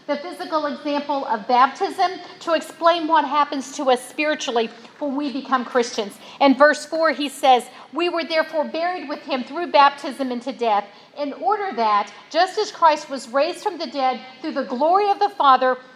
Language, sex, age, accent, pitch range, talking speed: English, female, 50-69, American, 255-330 Hz, 180 wpm